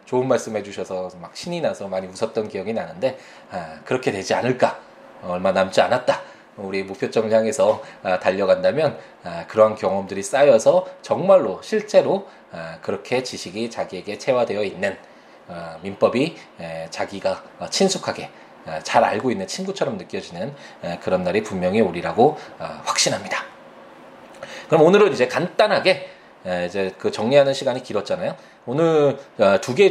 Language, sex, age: Korean, male, 20-39